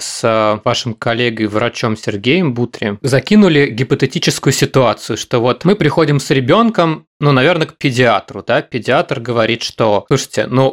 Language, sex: Russian, male